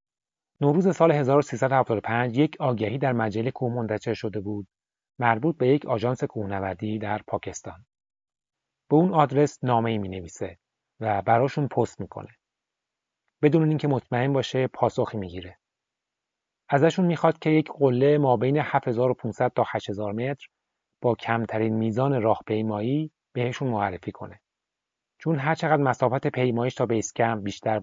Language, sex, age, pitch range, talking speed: Persian, male, 30-49, 110-140 Hz, 130 wpm